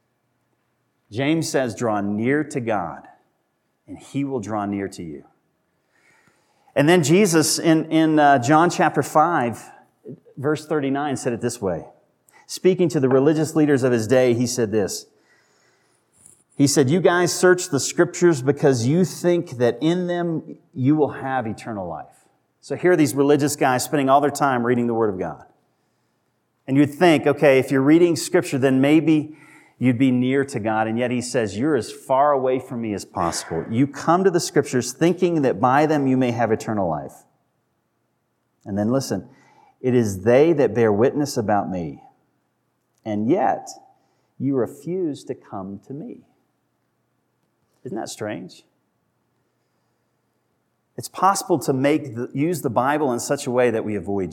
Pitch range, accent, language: 120-155 Hz, American, English